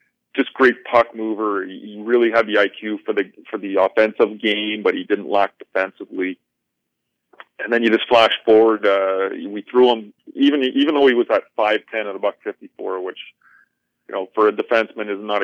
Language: English